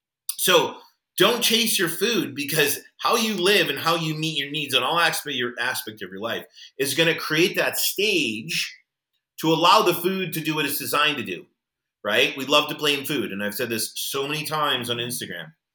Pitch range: 120-175 Hz